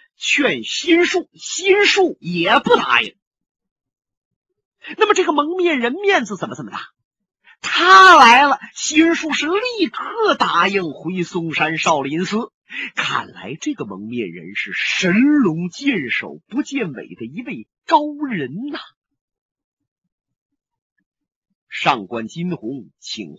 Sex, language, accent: male, Chinese, native